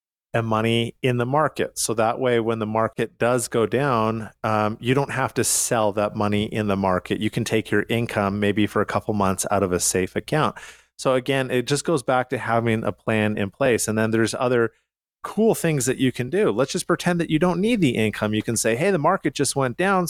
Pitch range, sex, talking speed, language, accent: 110-140 Hz, male, 240 wpm, English, American